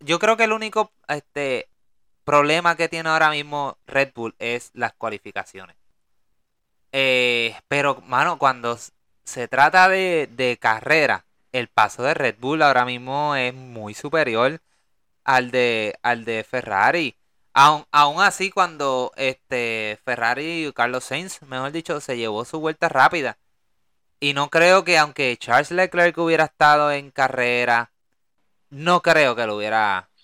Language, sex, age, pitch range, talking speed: Spanish, male, 20-39, 120-155 Hz, 145 wpm